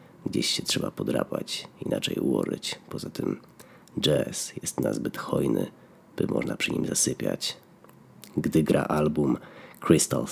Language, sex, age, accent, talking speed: Polish, male, 30-49, native, 120 wpm